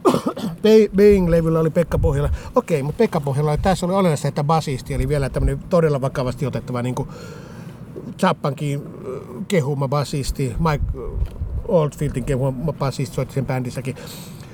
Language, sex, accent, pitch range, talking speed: Finnish, male, native, 130-175 Hz, 130 wpm